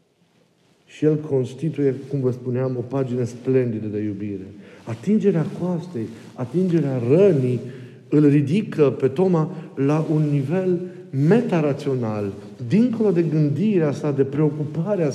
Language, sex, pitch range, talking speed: Romanian, male, 130-170 Hz, 115 wpm